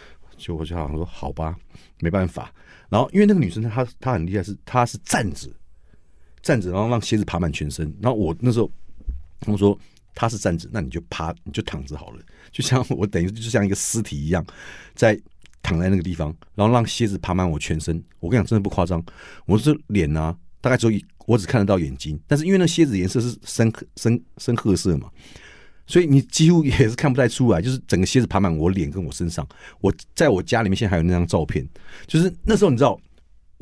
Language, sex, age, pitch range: Chinese, male, 50-69, 85-120 Hz